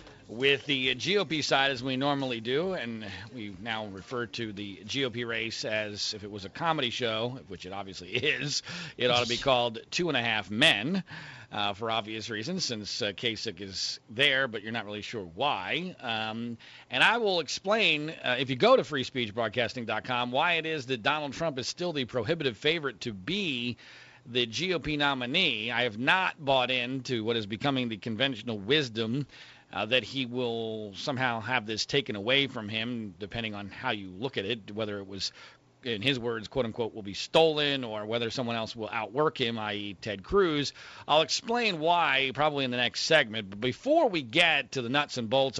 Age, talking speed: 40-59, 190 wpm